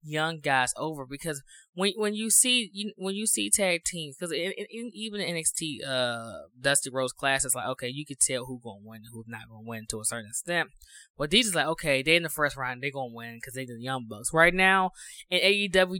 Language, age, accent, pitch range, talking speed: English, 20-39, American, 130-170 Hz, 250 wpm